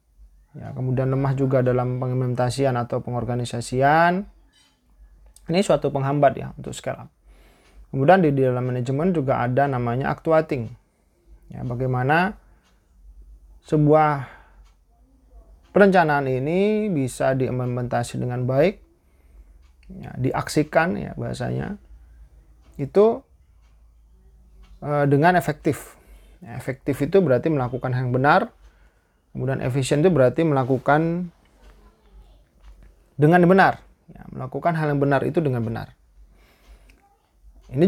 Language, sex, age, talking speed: Indonesian, male, 20-39, 100 wpm